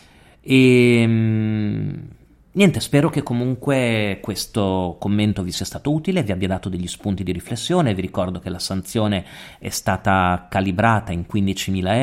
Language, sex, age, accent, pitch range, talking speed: Italian, male, 40-59, native, 100-130 Hz, 140 wpm